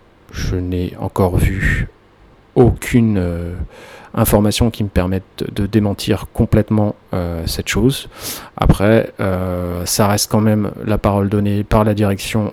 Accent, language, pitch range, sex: French, French, 95-115 Hz, male